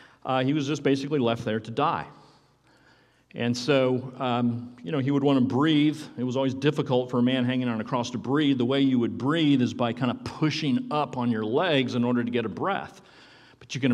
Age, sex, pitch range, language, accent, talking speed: 50-69, male, 115-140 Hz, English, American, 235 wpm